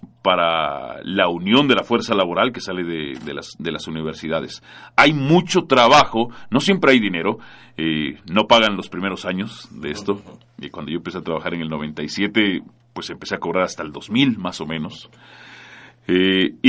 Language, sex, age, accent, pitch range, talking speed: Spanish, male, 40-59, Mexican, 85-120 Hz, 175 wpm